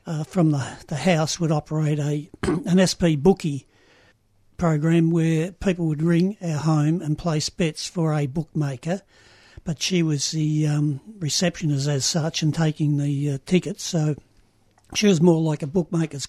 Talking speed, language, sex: 160 wpm, English, male